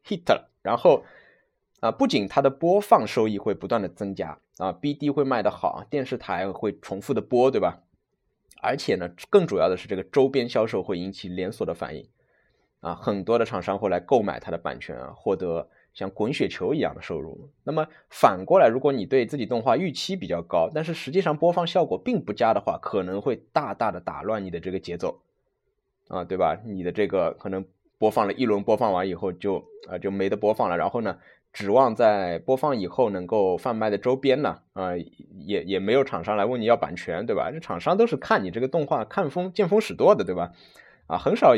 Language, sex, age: Chinese, male, 20-39